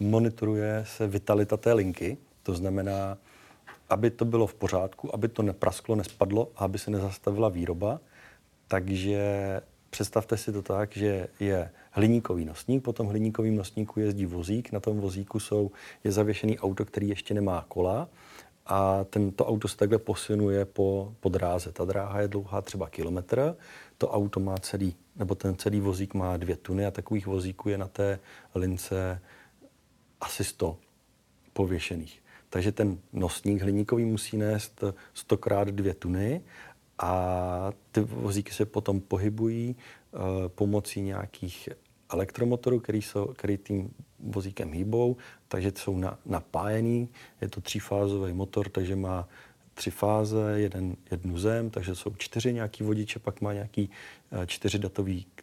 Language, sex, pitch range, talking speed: Czech, male, 95-105 Hz, 140 wpm